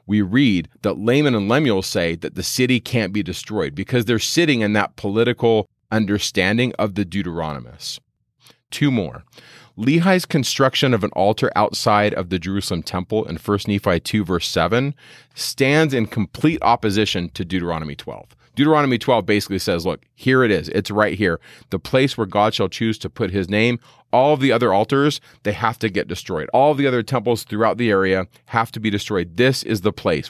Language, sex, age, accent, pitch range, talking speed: English, male, 30-49, American, 90-120 Hz, 190 wpm